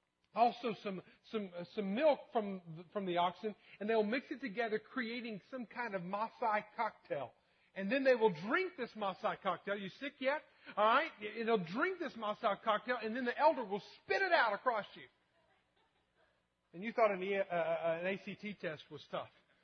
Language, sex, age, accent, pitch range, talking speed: English, male, 40-59, American, 180-225 Hz, 190 wpm